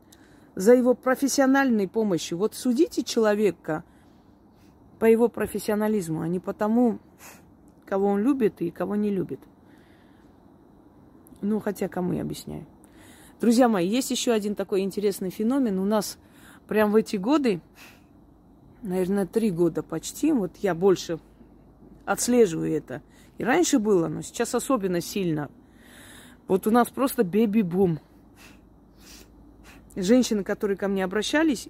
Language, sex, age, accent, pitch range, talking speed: Russian, female, 30-49, native, 175-230 Hz, 125 wpm